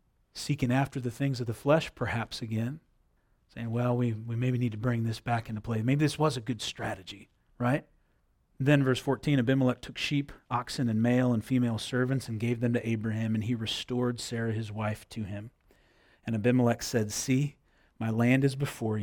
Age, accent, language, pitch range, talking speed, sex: 30-49, American, English, 120-155 Hz, 190 wpm, male